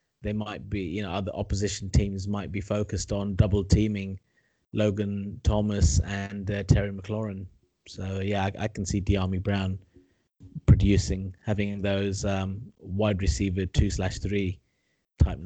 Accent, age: British, 20-39